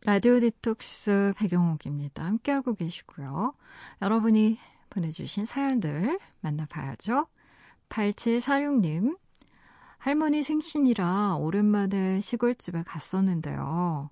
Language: Korean